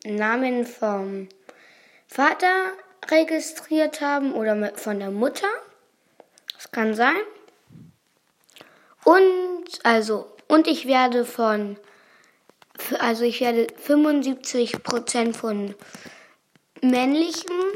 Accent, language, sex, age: German, German, female, 20-39